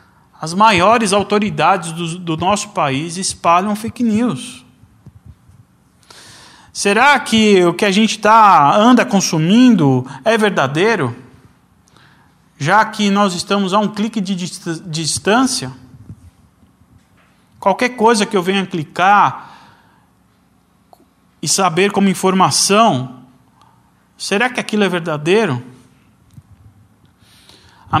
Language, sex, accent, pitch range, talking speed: Portuguese, male, Brazilian, 135-205 Hz, 95 wpm